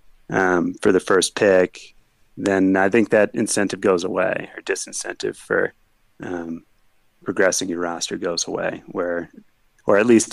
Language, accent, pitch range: English, American, 90-105 Hz